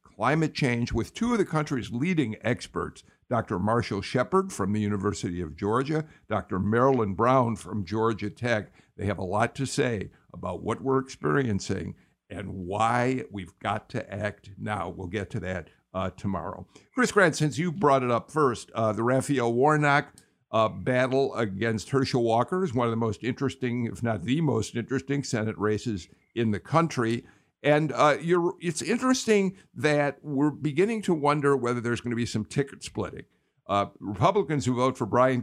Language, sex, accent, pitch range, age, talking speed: English, male, American, 105-145 Hz, 50-69, 175 wpm